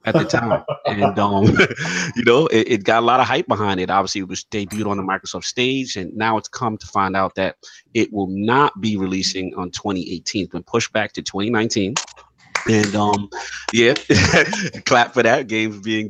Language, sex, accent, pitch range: English, male, American, 95-110 Hz